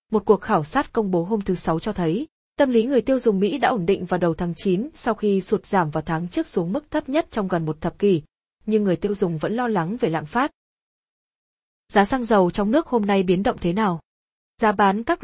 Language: Vietnamese